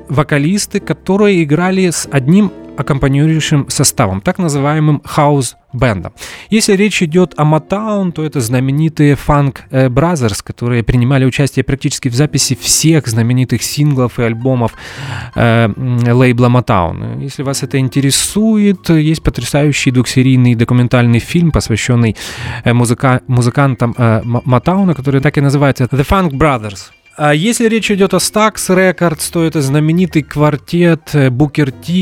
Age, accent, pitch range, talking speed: 20-39, native, 120-165 Hz, 125 wpm